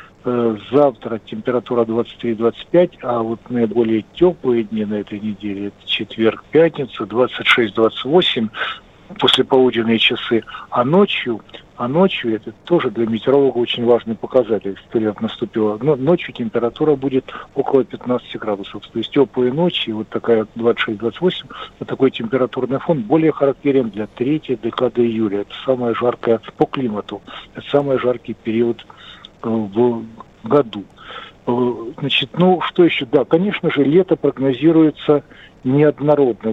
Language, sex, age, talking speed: Russian, male, 50-69, 125 wpm